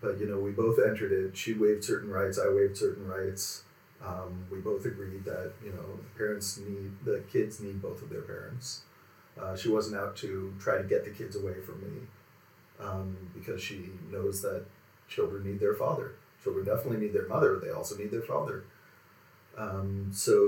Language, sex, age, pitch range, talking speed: English, male, 40-59, 100-145 Hz, 190 wpm